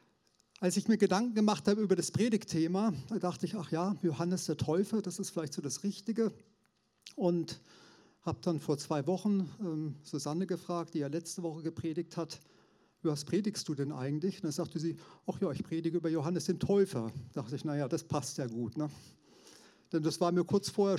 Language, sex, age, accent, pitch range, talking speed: German, male, 40-59, German, 150-190 Hz, 205 wpm